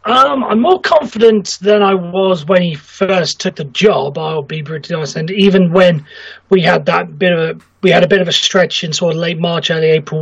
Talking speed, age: 235 wpm, 30-49